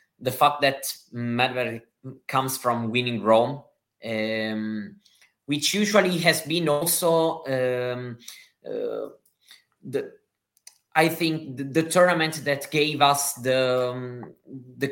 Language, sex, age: English, male, 20-39